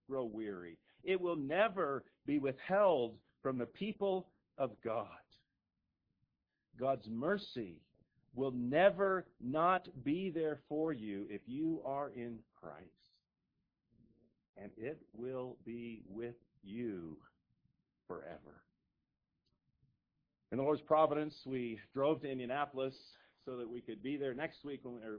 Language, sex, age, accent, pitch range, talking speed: English, male, 50-69, American, 105-145 Hz, 120 wpm